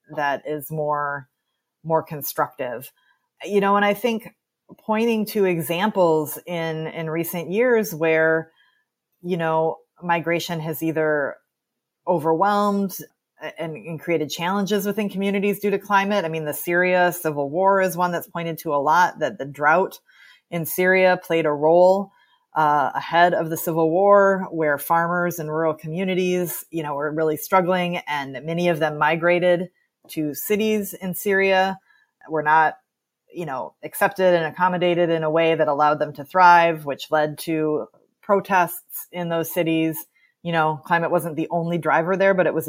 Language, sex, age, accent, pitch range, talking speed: English, female, 30-49, American, 155-190 Hz, 155 wpm